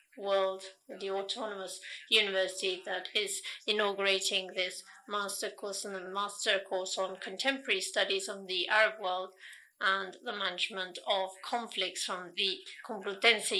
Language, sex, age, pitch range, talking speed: Spanish, female, 40-59, 190-225 Hz, 130 wpm